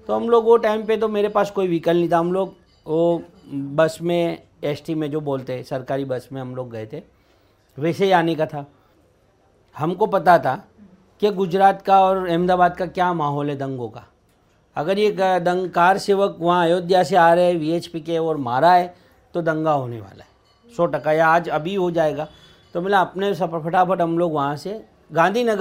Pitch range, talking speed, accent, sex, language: 130-175 Hz, 200 wpm, native, male, Hindi